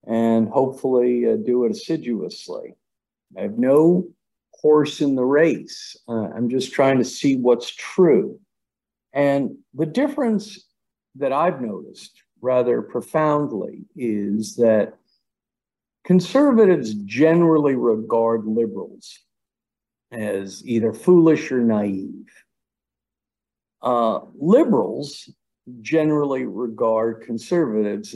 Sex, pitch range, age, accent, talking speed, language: male, 115-185 Hz, 50-69, American, 95 wpm, English